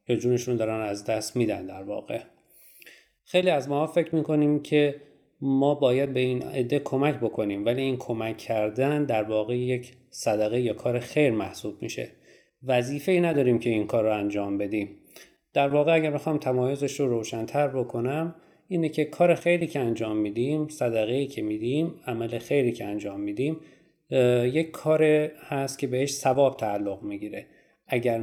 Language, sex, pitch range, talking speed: Persian, male, 115-150 Hz, 165 wpm